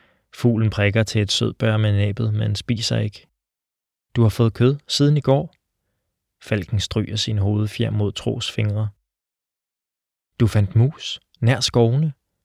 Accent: native